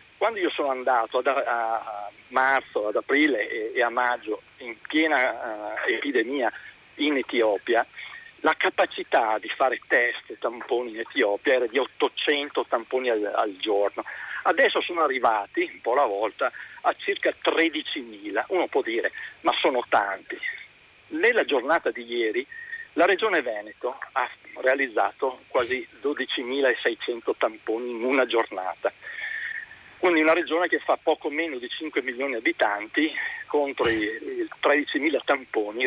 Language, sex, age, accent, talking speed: Italian, male, 40-59, native, 130 wpm